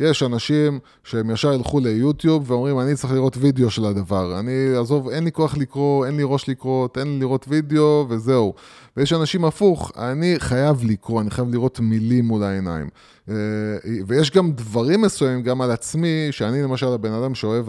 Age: 20-39